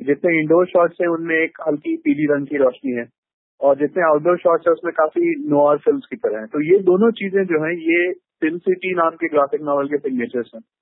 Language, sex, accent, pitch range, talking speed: Hindi, male, native, 135-185 Hz, 210 wpm